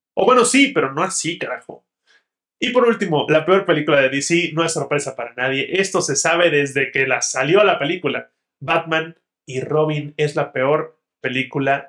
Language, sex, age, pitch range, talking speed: Spanish, male, 20-39, 145-205 Hz, 185 wpm